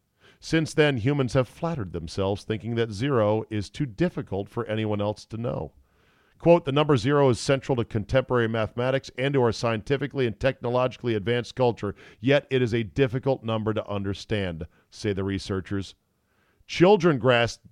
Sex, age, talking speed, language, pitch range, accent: male, 40-59, 160 wpm, English, 100-130 Hz, American